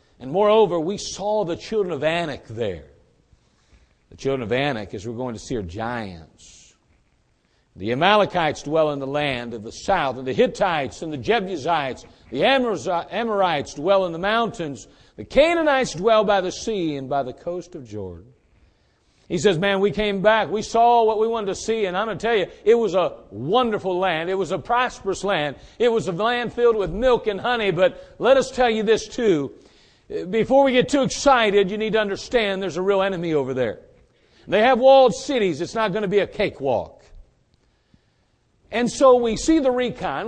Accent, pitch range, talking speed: American, 170-235 Hz, 195 wpm